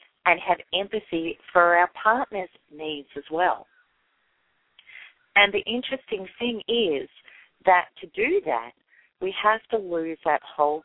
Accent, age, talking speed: American, 40-59, 135 wpm